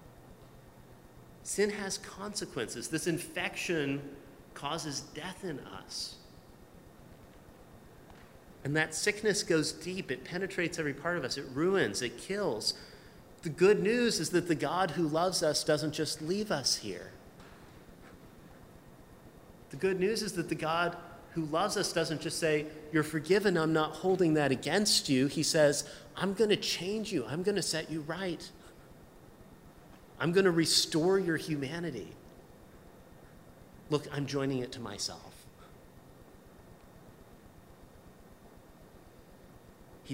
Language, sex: English, male